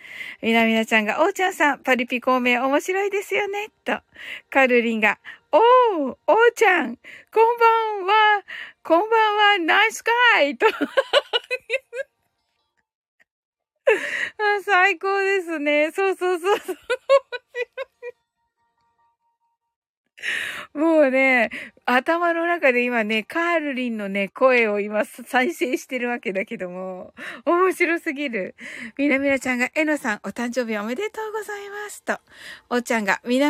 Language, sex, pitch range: Japanese, female, 260-415 Hz